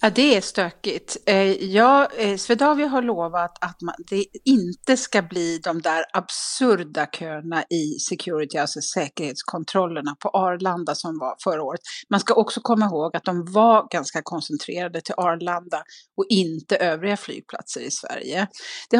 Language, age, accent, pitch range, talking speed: English, 40-59, Swedish, 170-220 Hz, 140 wpm